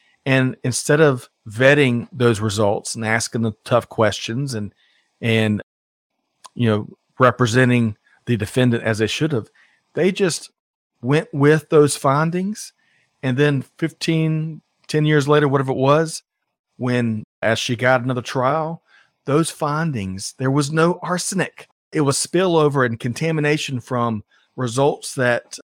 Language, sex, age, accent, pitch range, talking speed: English, male, 40-59, American, 115-150 Hz, 135 wpm